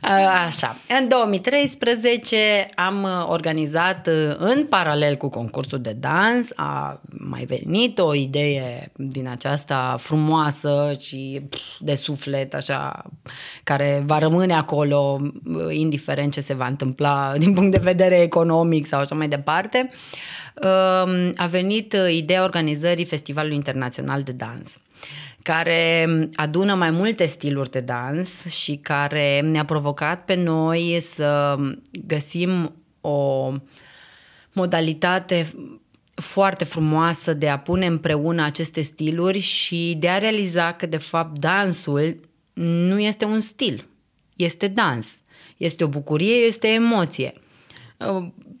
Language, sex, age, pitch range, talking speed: Romanian, female, 20-39, 145-185 Hz, 115 wpm